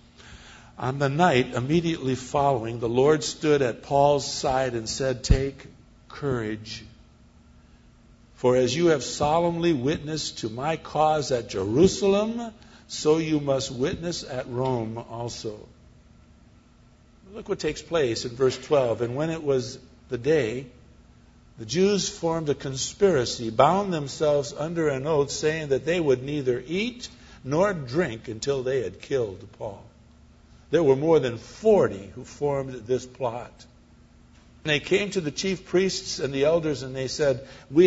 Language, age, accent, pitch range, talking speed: English, 60-79, American, 115-155 Hz, 145 wpm